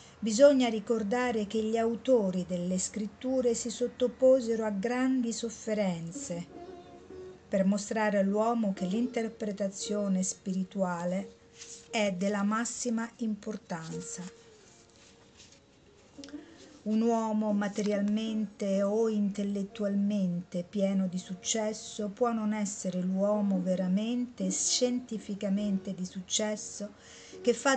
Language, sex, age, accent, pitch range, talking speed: Italian, female, 50-69, native, 195-240 Hz, 85 wpm